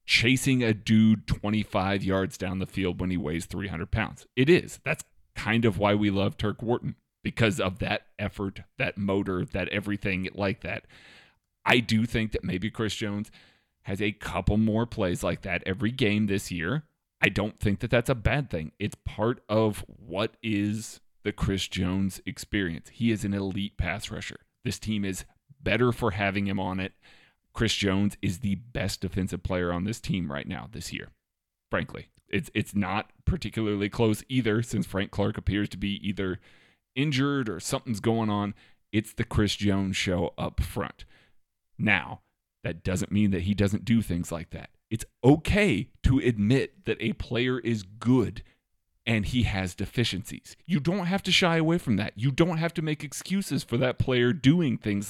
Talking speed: 180 wpm